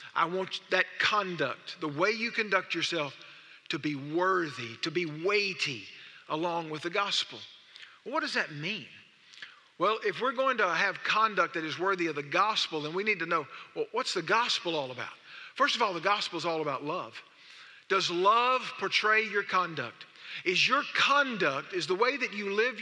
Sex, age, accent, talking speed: male, 50-69, American, 180 wpm